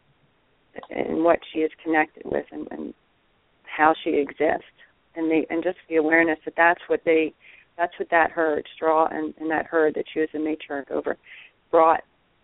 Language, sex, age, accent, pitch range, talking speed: English, female, 30-49, American, 155-175 Hz, 180 wpm